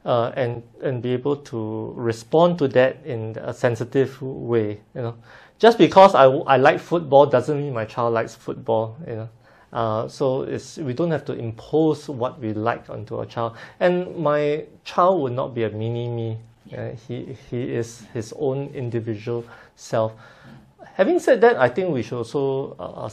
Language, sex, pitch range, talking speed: English, male, 115-140 Hz, 180 wpm